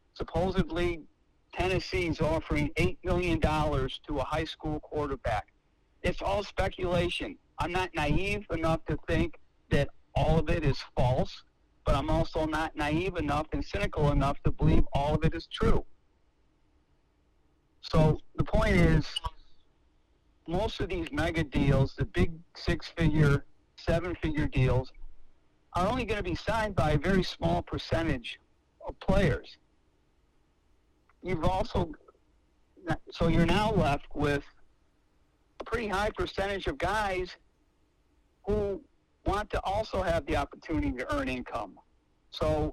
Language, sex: English, male